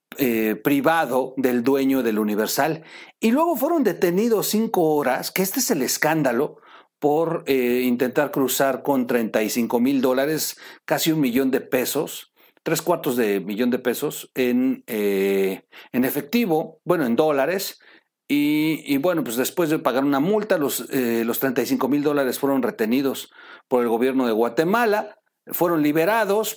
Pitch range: 130-190 Hz